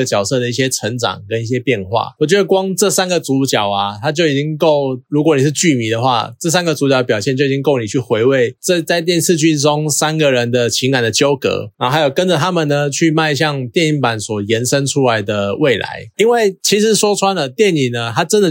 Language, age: Chinese, 20-39